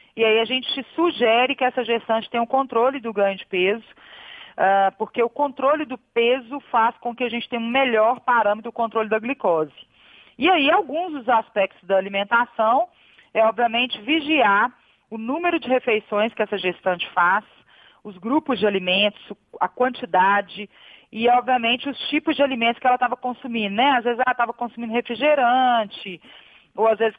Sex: female